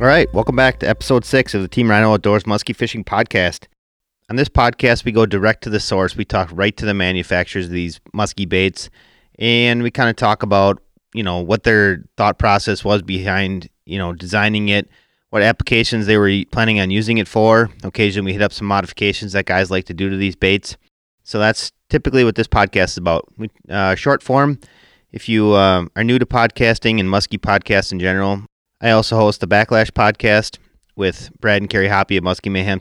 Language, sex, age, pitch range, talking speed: English, male, 30-49, 95-110 Hz, 205 wpm